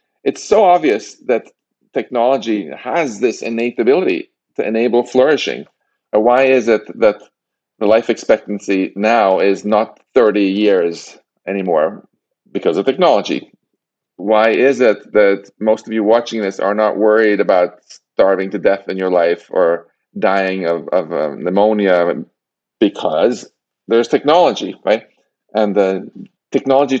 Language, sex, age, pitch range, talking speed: English, male, 40-59, 100-115 Hz, 130 wpm